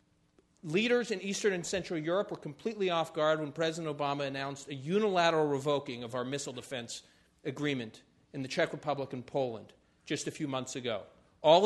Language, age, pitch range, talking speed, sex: English, 40-59, 150-195 Hz, 175 wpm, male